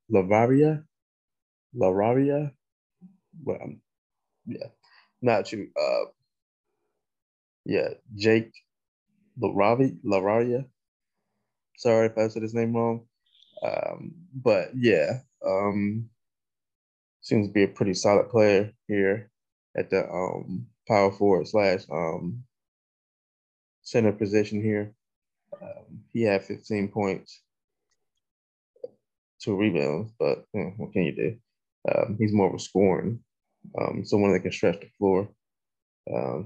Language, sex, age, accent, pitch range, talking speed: English, male, 20-39, American, 100-125 Hz, 110 wpm